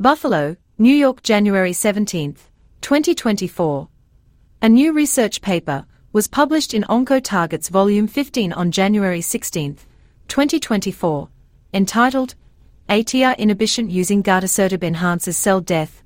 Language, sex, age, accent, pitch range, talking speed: English, female, 40-59, Australian, 170-230 Hz, 105 wpm